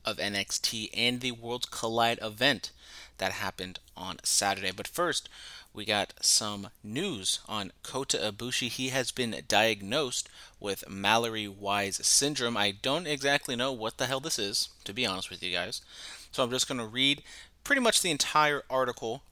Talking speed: 170 wpm